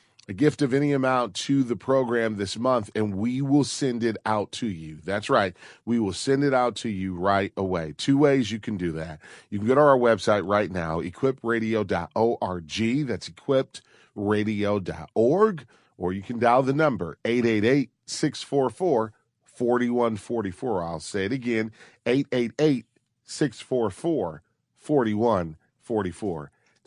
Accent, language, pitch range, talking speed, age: American, English, 95-120 Hz, 130 wpm, 40-59